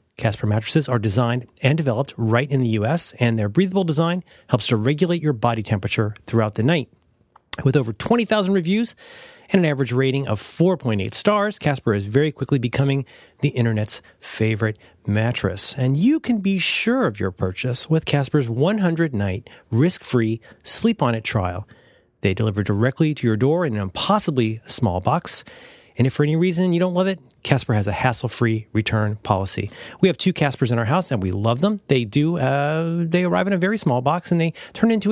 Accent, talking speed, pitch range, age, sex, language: American, 190 wpm, 115-170 Hz, 30-49, male, English